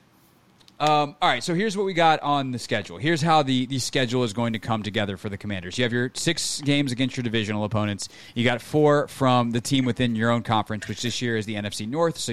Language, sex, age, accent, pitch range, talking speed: English, male, 30-49, American, 105-130 Hz, 250 wpm